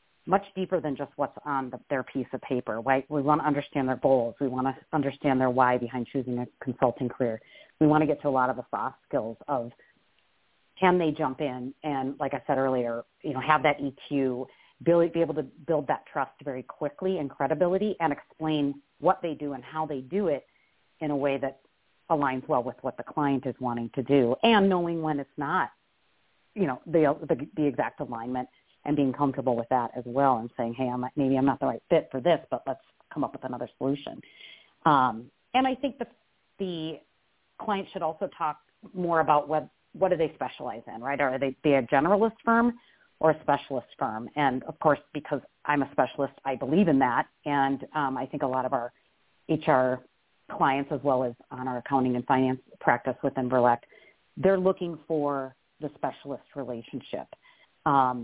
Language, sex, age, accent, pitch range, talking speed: English, female, 40-59, American, 130-160 Hz, 200 wpm